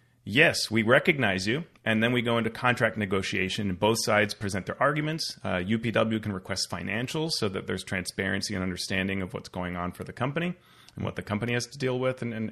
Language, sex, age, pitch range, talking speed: English, male, 30-49, 95-120 Hz, 215 wpm